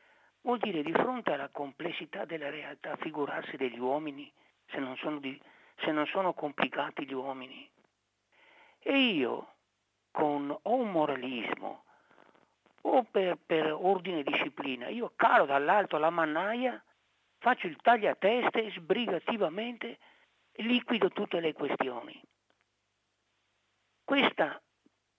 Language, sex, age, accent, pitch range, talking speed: Italian, male, 50-69, native, 140-185 Hz, 115 wpm